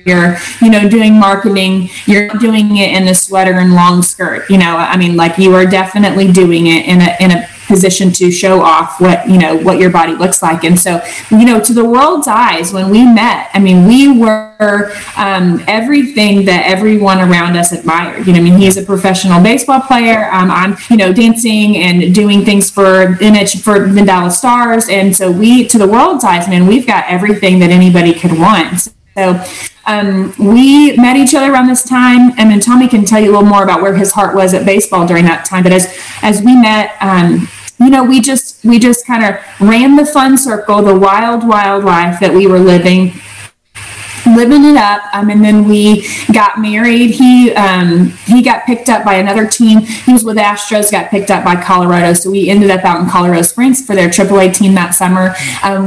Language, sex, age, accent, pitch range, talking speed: English, female, 20-39, American, 185-225 Hz, 210 wpm